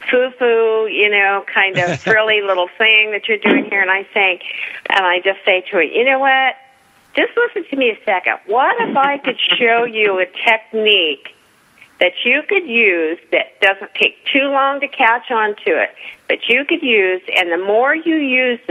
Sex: female